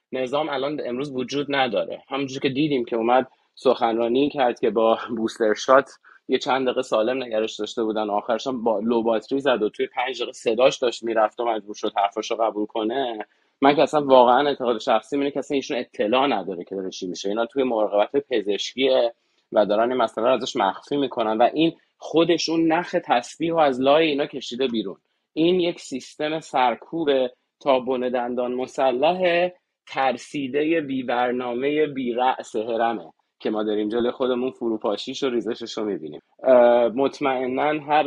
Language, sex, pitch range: Persian, male, 115-140 Hz